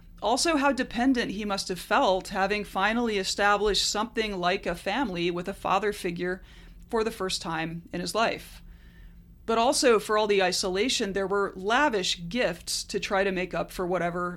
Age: 30-49